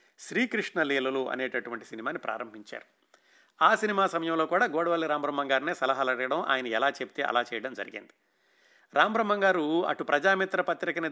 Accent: native